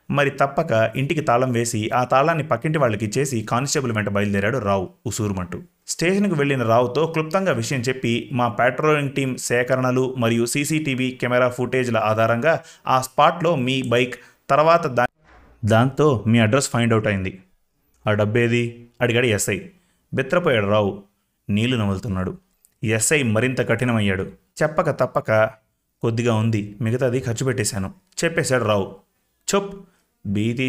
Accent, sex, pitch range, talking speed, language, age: native, male, 110-145 Hz, 120 wpm, Telugu, 30-49